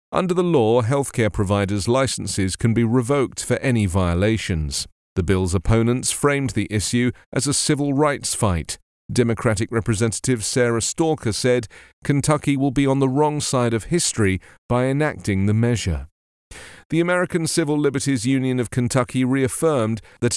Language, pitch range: English, 105-135 Hz